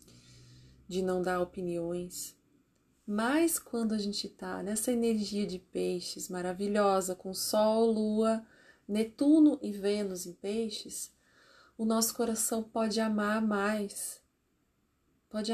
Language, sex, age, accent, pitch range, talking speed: Portuguese, female, 30-49, Brazilian, 200-250 Hz, 110 wpm